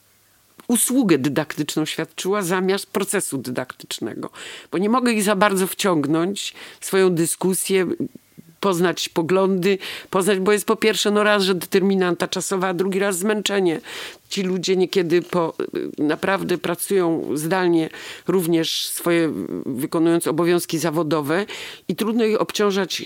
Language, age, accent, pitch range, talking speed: Polish, 50-69, native, 165-200 Hz, 125 wpm